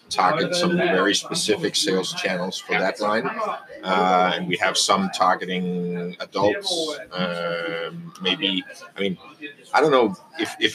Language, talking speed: English, 140 wpm